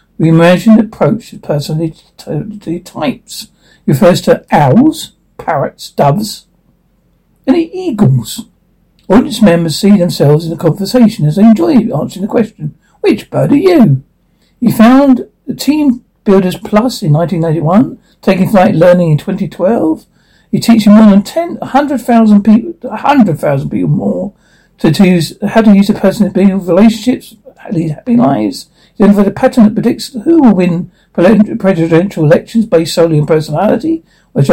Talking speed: 150 wpm